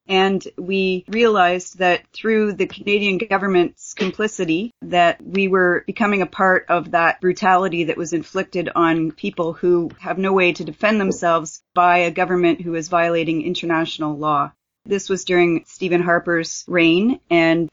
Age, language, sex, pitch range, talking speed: 30-49, English, female, 170-190 Hz, 150 wpm